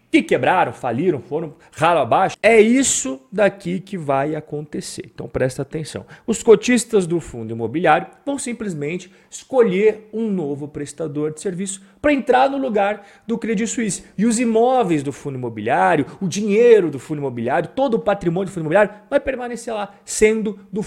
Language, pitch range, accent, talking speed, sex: Portuguese, 165-225 Hz, Brazilian, 165 wpm, male